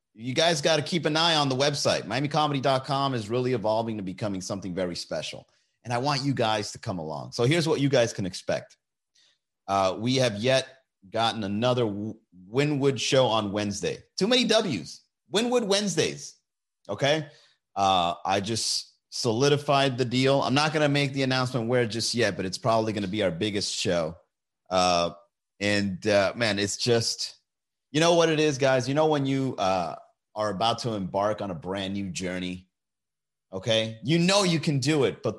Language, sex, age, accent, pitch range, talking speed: English, male, 30-49, American, 110-155 Hz, 185 wpm